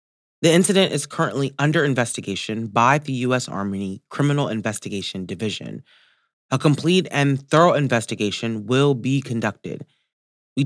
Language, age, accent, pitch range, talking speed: English, 30-49, American, 105-145 Hz, 125 wpm